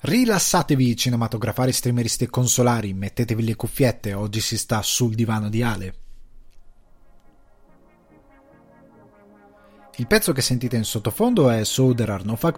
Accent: native